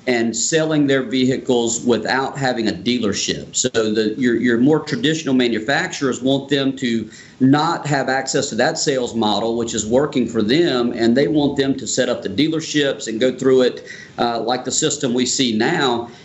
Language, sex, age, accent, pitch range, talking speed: English, male, 40-59, American, 125-155 Hz, 185 wpm